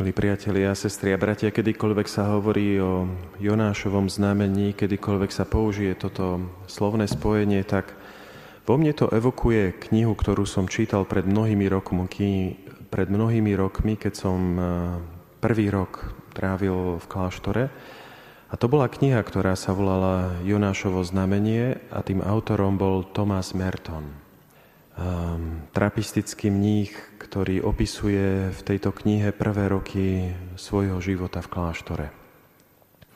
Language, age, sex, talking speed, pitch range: Slovak, 30-49, male, 120 wpm, 90-105 Hz